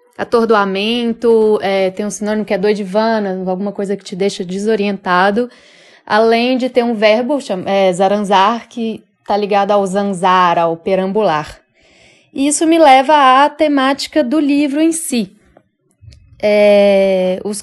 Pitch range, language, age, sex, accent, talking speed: 200-255 Hz, Portuguese, 20-39, female, Brazilian, 125 wpm